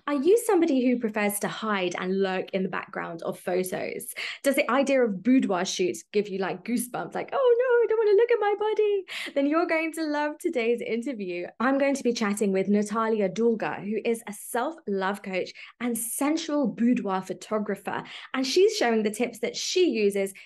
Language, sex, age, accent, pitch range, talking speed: English, female, 20-39, British, 200-270 Hz, 190 wpm